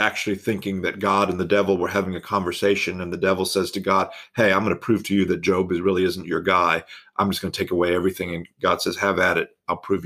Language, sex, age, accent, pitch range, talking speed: English, male, 50-69, American, 90-100 Hz, 270 wpm